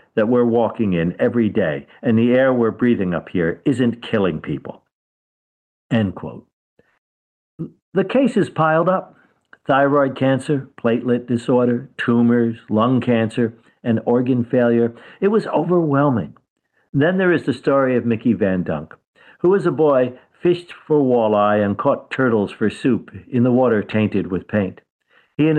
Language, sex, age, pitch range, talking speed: English, male, 60-79, 110-135 Hz, 150 wpm